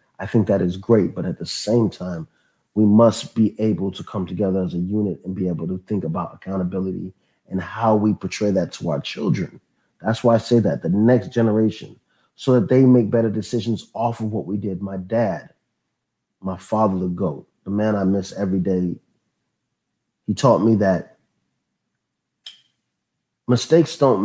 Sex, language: male, English